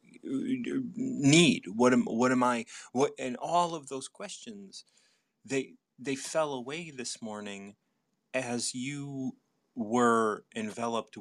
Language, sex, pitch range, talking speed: English, male, 115-165 Hz, 120 wpm